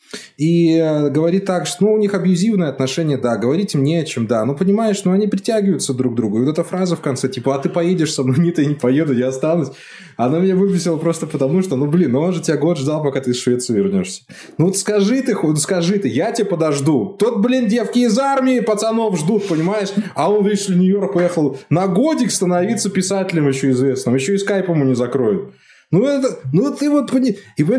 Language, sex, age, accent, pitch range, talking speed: Russian, male, 20-39, native, 155-210 Hz, 215 wpm